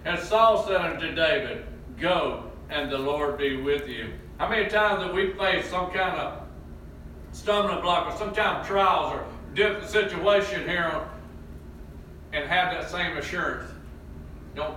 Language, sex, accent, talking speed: English, male, American, 145 wpm